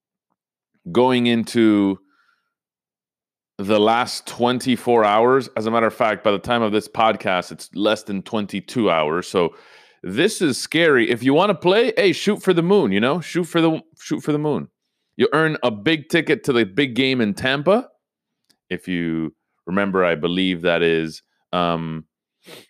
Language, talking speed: English, 170 wpm